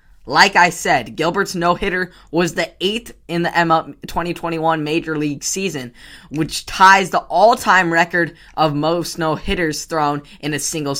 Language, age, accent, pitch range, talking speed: English, 10-29, American, 150-180 Hz, 145 wpm